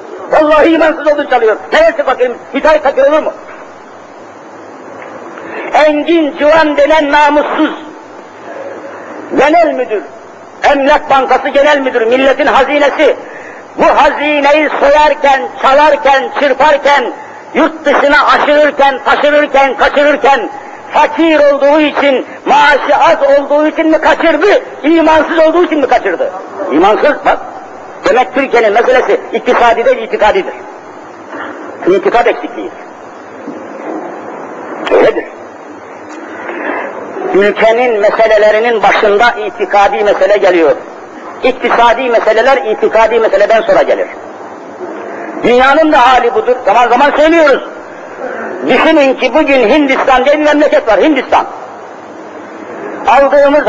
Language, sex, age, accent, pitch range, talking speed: Turkish, male, 50-69, native, 255-305 Hz, 90 wpm